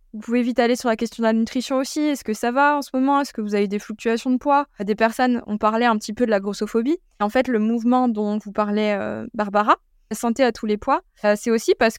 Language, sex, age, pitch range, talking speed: French, female, 20-39, 210-260 Hz, 275 wpm